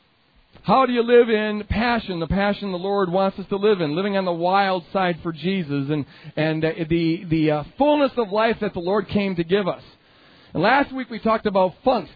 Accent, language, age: American, English, 40-59